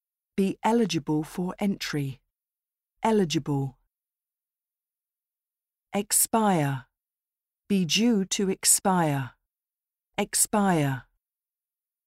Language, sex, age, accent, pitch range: Japanese, female, 40-59, British, 140-205 Hz